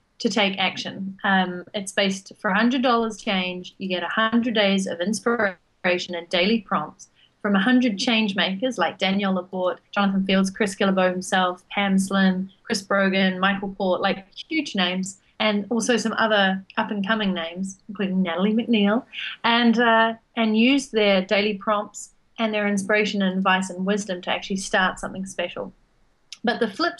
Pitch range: 185-220 Hz